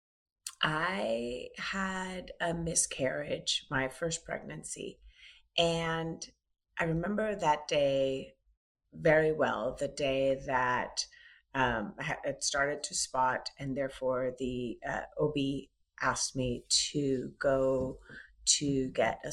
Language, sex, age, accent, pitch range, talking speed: English, female, 30-49, American, 130-160 Hz, 105 wpm